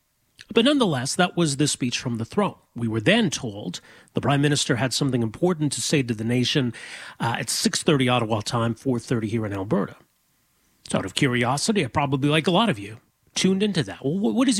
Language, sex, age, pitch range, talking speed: English, male, 40-59, 130-190 Hz, 205 wpm